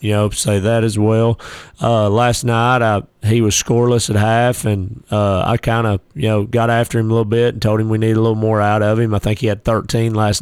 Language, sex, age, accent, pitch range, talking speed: English, male, 30-49, American, 105-115 Hz, 260 wpm